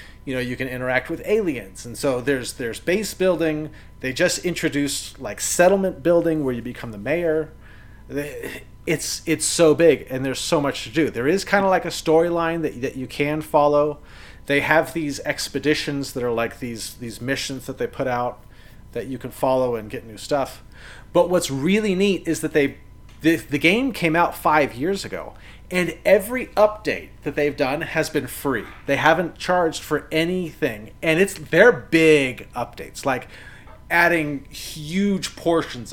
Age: 40-59